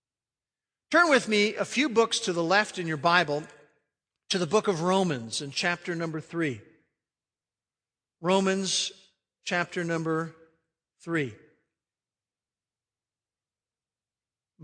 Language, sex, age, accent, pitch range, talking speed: English, male, 50-69, American, 170-220 Hz, 105 wpm